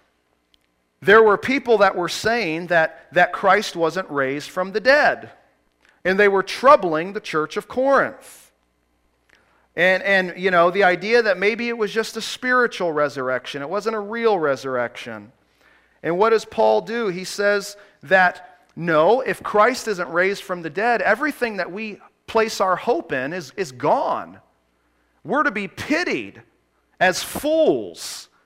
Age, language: 40-59, English